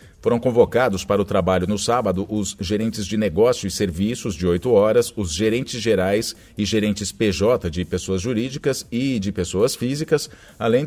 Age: 50-69